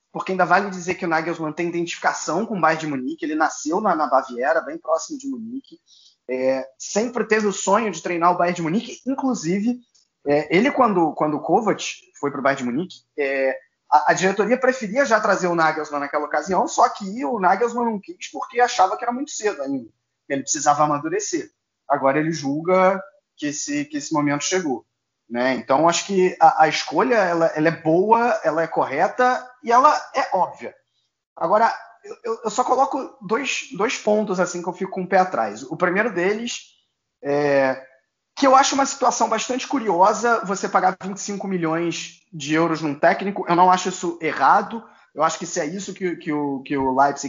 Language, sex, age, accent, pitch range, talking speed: Portuguese, male, 20-39, Brazilian, 150-230 Hz, 195 wpm